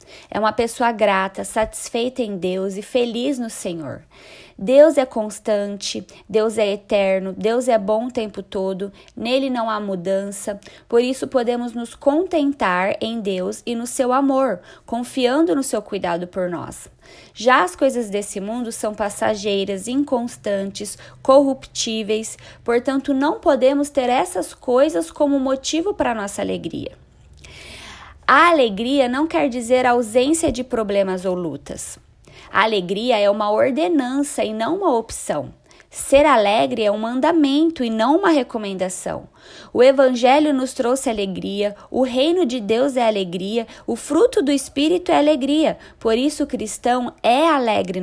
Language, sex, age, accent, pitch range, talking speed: Portuguese, female, 20-39, Brazilian, 205-275 Hz, 145 wpm